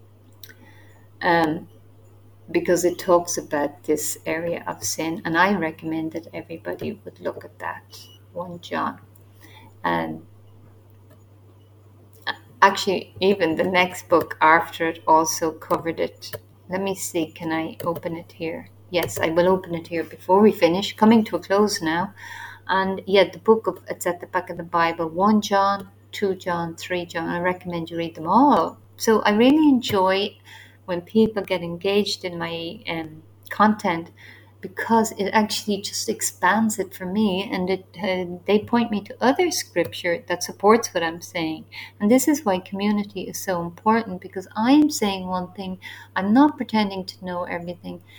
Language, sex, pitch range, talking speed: English, female, 160-210 Hz, 165 wpm